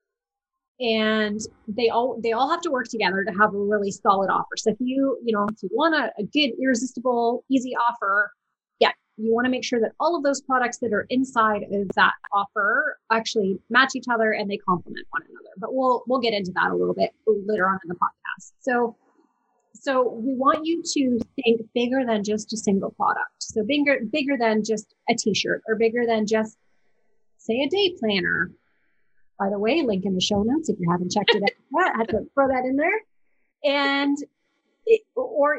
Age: 30-49